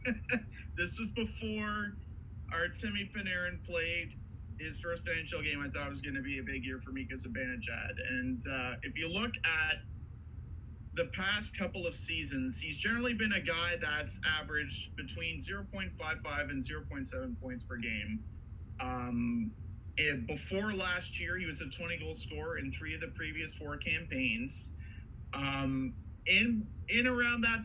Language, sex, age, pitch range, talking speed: English, male, 30-49, 90-140 Hz, 155 wpm